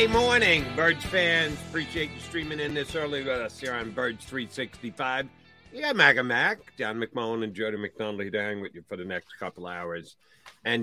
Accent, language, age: American, English, 50-69